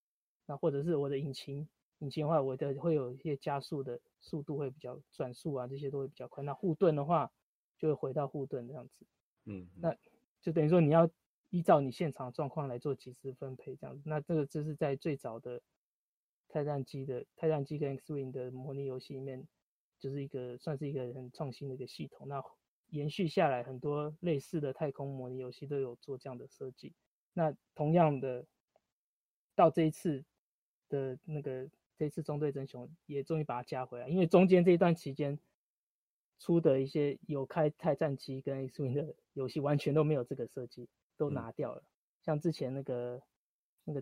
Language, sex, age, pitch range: Chinese, male, 20-39, 130-155 Hz